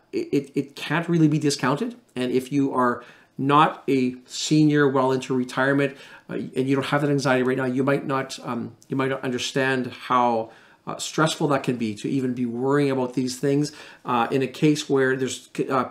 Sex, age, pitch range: male, 40-59, 125-145 Hz